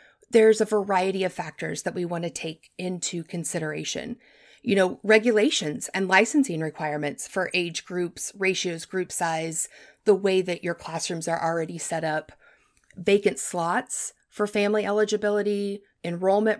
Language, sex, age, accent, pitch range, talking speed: English, female, 30-49, American, 175-220 Hz, 140 wpm